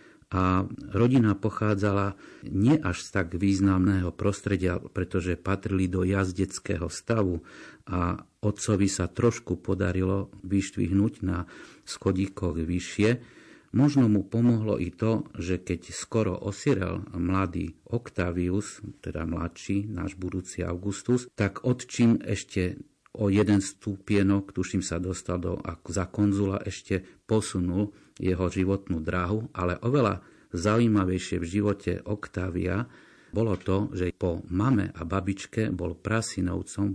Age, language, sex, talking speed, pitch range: 50-69, Slovak, male, 115 wpm, 90-105 Hz